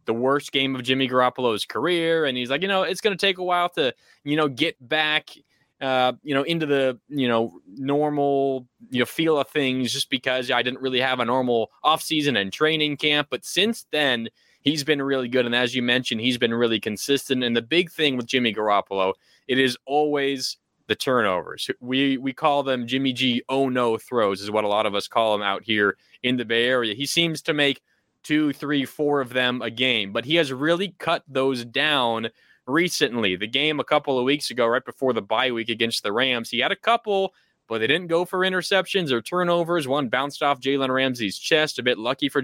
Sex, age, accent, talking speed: male, 20-39, American, 215 wpm